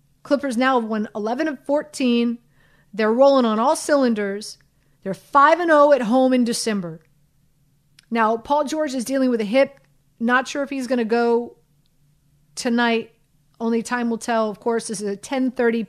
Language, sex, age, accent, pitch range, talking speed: English, female, 40-59, American, 195-240 Hz, 160 wpm